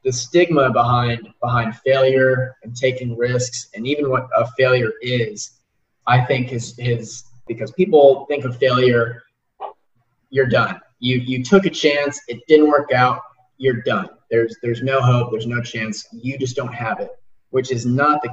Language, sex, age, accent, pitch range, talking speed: English, male, 20-39, American, 120-140 Hz, 170 wpm